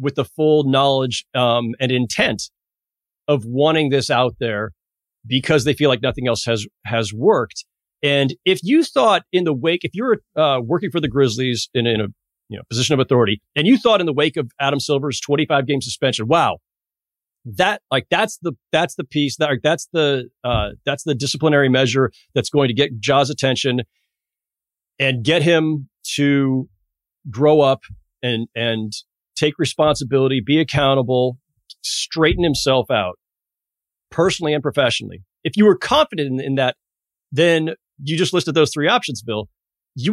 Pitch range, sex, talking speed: 125-160 Hz, male, 165 wpm